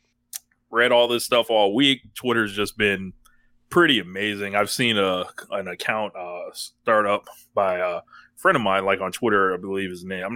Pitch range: 105-125 Hz